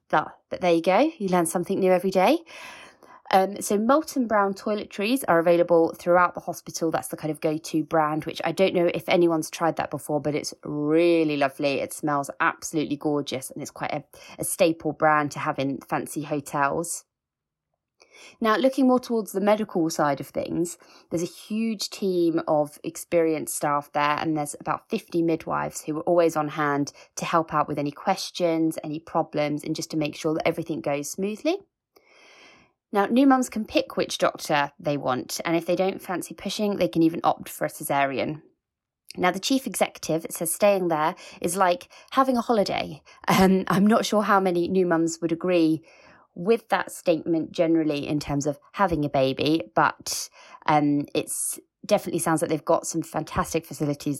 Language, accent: English, British